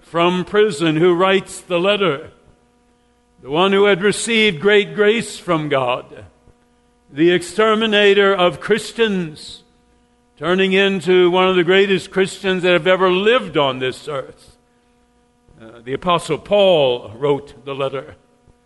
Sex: male